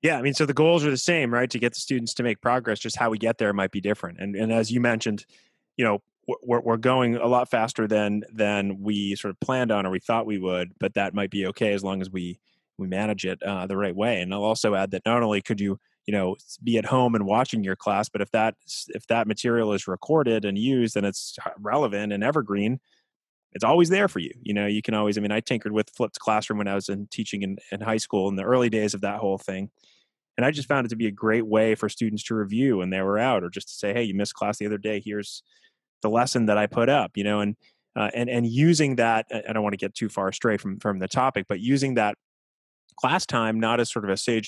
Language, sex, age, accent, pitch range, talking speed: English, male, 20-39, American, 100-120 Hz, 270 wpm